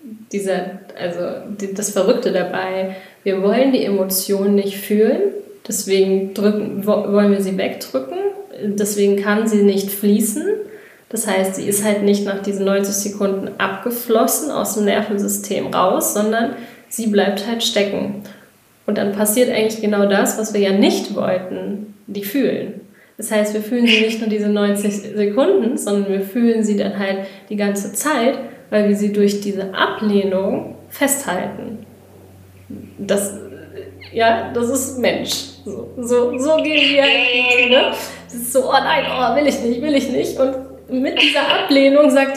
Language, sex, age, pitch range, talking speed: German, female, 20-39, 200-265 Hz, 155 wpm